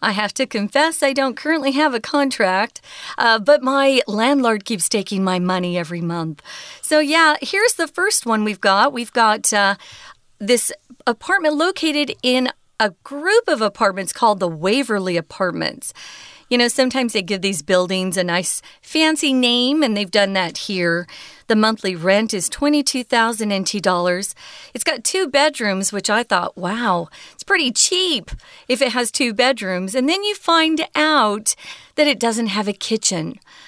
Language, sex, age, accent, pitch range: Chinese, female, 40-59, American, 200-290 Hz